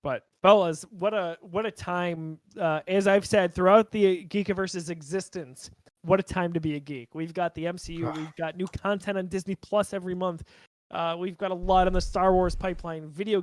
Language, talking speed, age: English, 205 wpm, 20-39